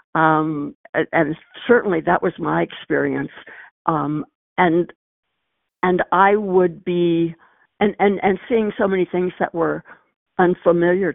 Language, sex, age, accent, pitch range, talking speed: English, female, 60-79, American, 155-185 Hz, 130 wpm